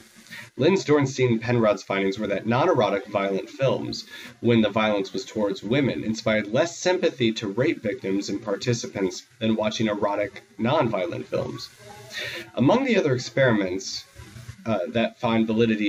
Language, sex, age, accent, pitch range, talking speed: English, male, 30-49, American, 105-125 Hz, 135 wpm